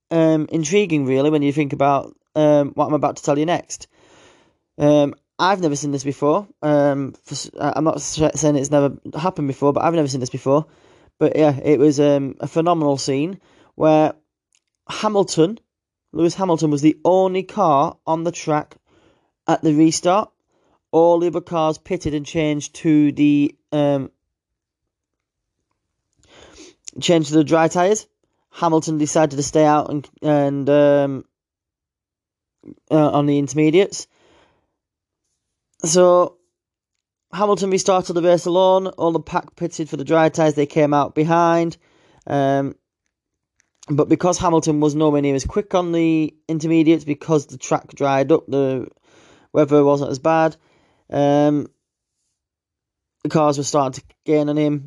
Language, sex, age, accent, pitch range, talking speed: English, male, 20-39, British, 145-165 Hz, 145 wpm